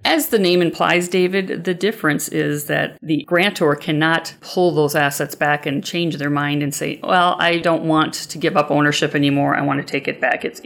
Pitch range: 150-180 Hz